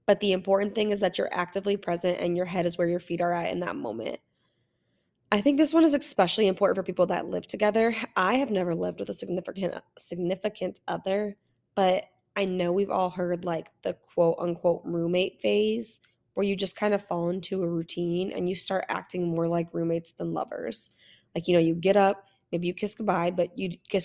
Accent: American